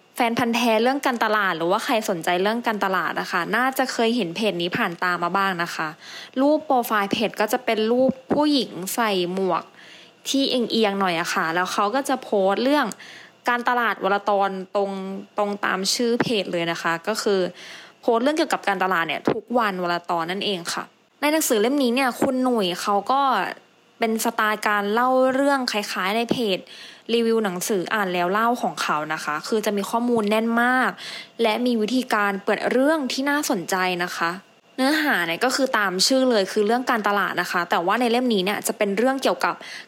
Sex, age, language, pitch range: female, 20-39, English, 195-250 Hz